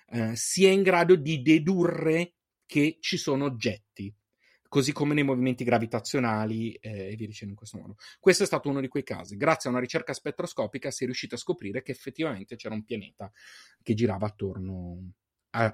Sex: male